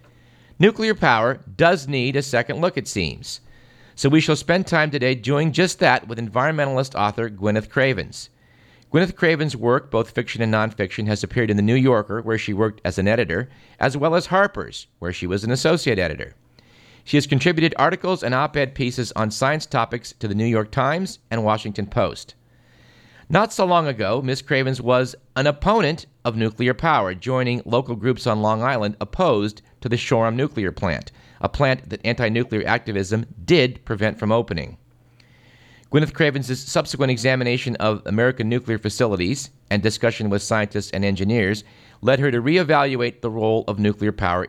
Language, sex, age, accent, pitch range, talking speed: English, male, 50-69, American, 110-140 Hz, 170 wpm